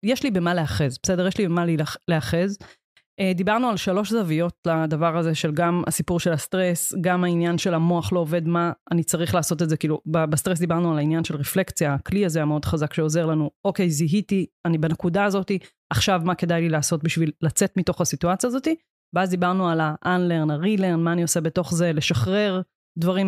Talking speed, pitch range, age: 190 wpm, 165-200 Hz, 20-39